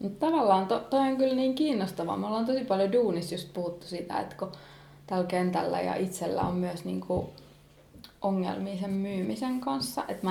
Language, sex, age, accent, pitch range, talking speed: English, female, 20-39, Finnish, 180-255 Hz, 170 wpm